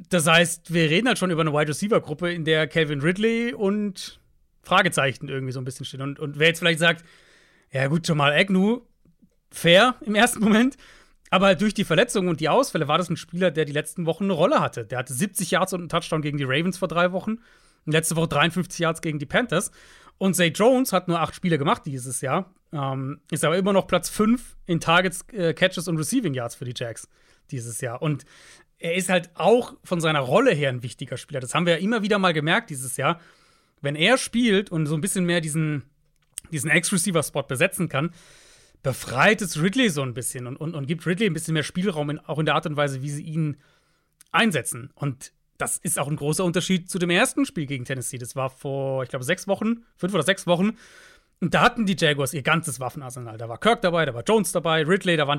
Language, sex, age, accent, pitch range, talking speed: German, male, 40-59, German, 145-190 Hz, 225 wpm